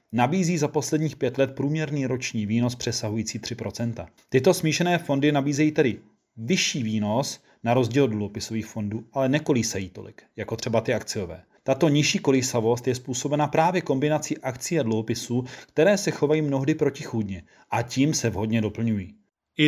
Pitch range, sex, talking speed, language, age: 115-145 Hz, male, 150 wpm, Czech, 30-49